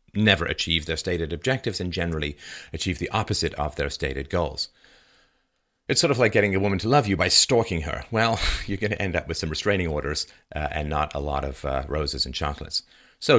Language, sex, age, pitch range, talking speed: English, male, 40-59, 80-105 Hz, 215 wpm